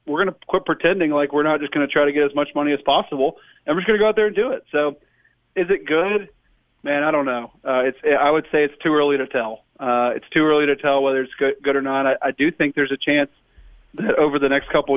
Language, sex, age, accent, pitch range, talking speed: English, male, 40-59, American, 135-150 Hz, 285 wpm